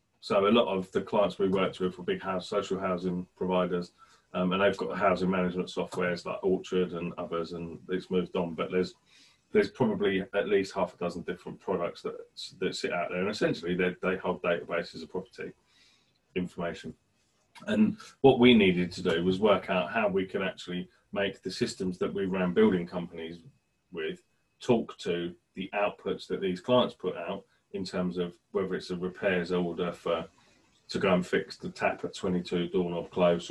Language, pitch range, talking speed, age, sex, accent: English, 90-95 Hz, 190 wpm, 30-49, male, British